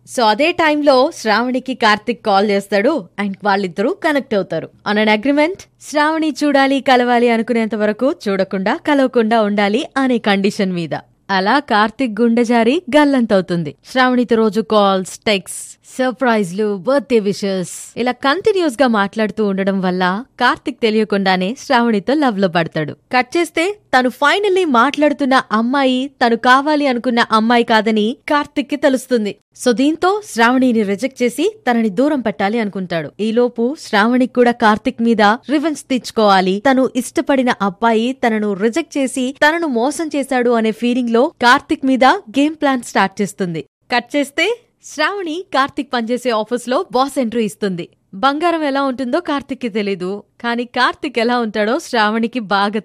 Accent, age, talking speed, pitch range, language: native, 20-39, 130 wpm, 210-275 Hz, Telugu